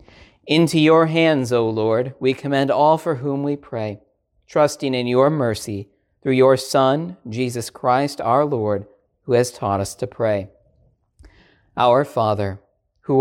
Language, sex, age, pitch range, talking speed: English, male, 40-59, 105-140 Hz, 145 wpm